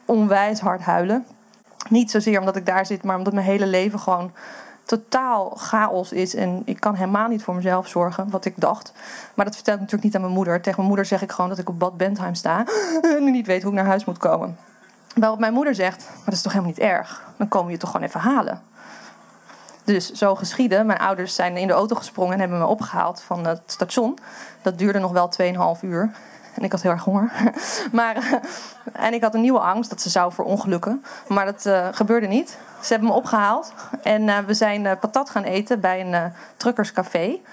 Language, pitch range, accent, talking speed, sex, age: Dutch, 185-220 Hz, Dutch, 215 wpm, female, 20-39